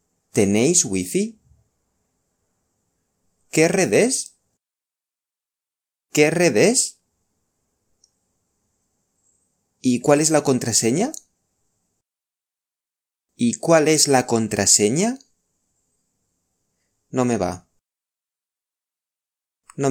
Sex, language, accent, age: male, Chinese, Spanish, 30-49